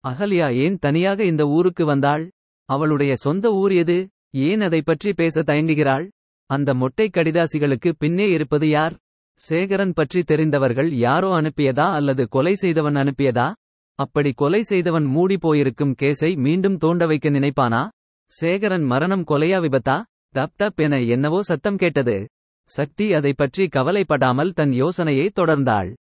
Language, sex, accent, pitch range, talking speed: Tamil, male, native, 140-175 Hz, 120 wpm